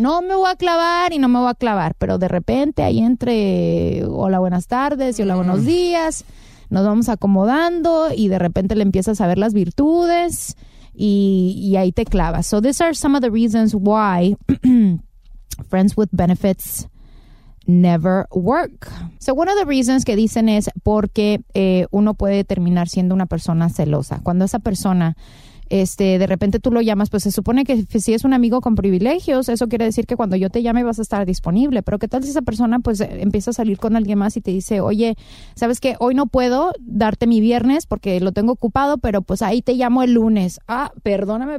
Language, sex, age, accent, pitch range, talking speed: Spanish, female, 20-39, Mexican, 190-255 Hz, 200 wpm